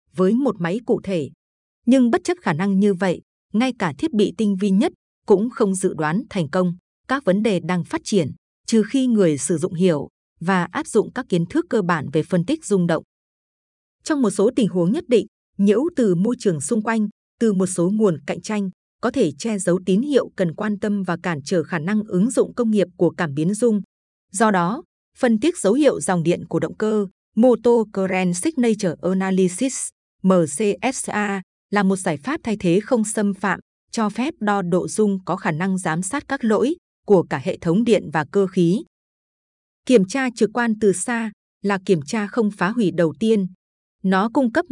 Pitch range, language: 180-230 Hz, Vietnamese